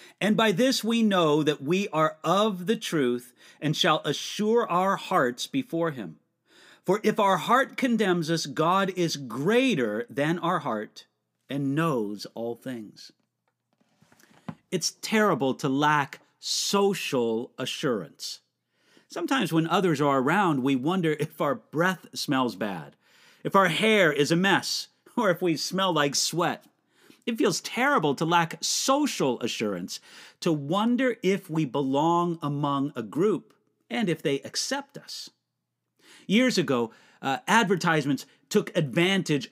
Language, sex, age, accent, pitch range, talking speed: English, male, 50-69, American, 145-200 Hz, 135 wpm